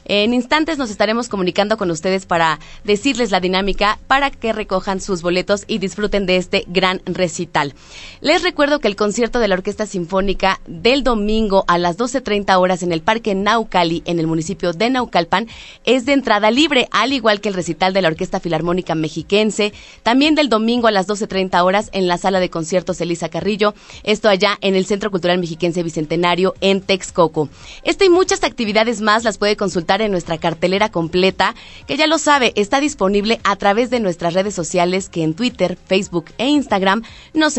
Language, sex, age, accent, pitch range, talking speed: Spanish, female, 30-49, Mexican, 180-225 Hz, 185 wpm